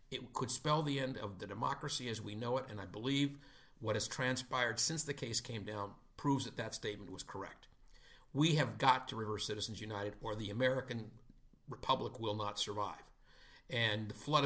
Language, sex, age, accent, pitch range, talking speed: English, male, 50-69, American, 115-155 Hz, 190 wpm